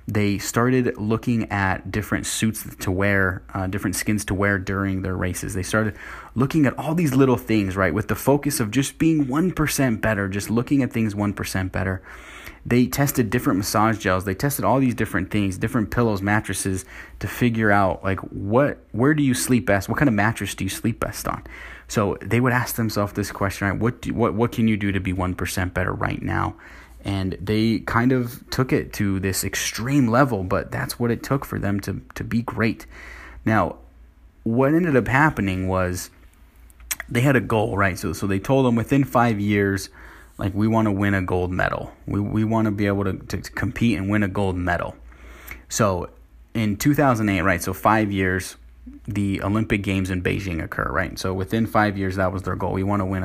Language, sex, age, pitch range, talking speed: English, male, 20-39, 95-120 Hz, 205 wpm